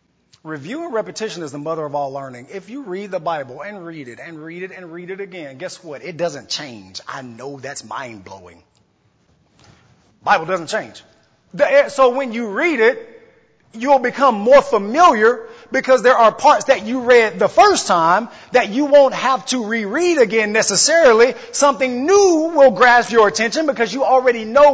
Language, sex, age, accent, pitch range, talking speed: English, male, 30-49, American, 185-270 Hz, 180 wpm